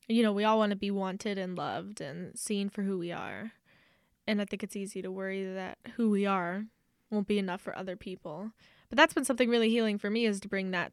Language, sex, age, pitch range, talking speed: English, female, 10-29, 200-235 Hz, 245 wpm